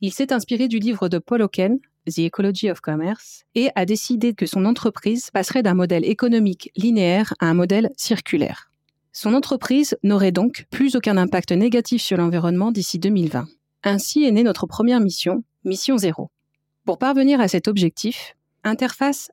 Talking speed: 165 wpm